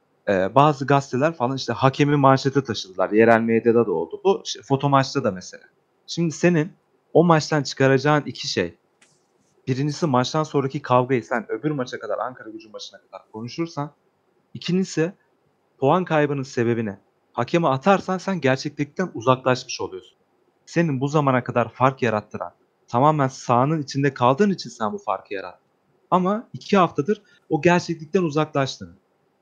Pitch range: 125-165 Hz